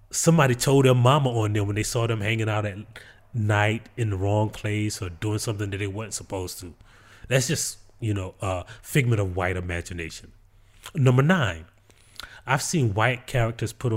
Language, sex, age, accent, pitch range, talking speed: English, male, 30-49, American, 100-135 Hz, 180 wpm